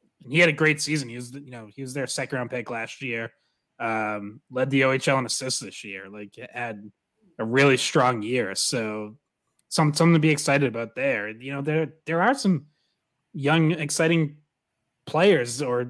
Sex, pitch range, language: male, 120-150 Hz, English